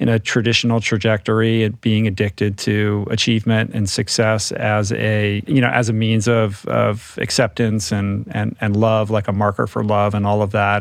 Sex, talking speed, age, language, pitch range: male, 190 wpm, 40-59, English, 105-120 Hz